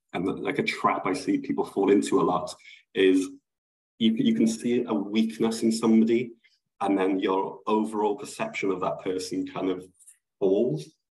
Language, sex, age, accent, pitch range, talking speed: English, male, 20-39, British, 95-115 Hz, 165 wpm